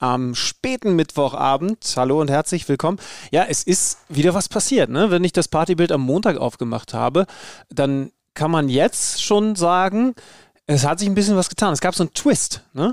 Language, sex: German, male